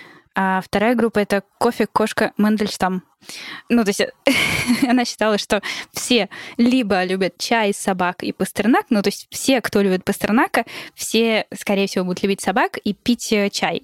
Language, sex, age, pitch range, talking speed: Russian, female, 10-29, 195-235 Hz, 150 wpm